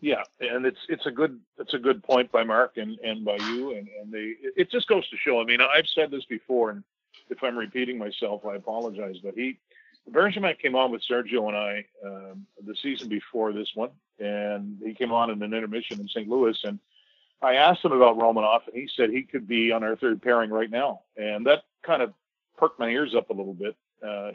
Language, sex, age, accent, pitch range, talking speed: English, male, 40-59, American, 105-135 Hz, 225 wpm